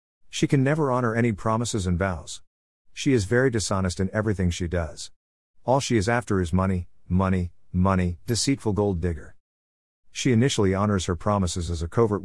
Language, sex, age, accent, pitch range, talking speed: English, male, 50-69, American, 90-110 Hz, 170 wpm